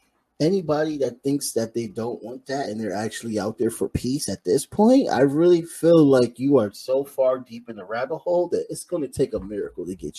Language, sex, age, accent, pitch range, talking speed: English, male, 30-49, American, 120-180 Hz, 235 wpm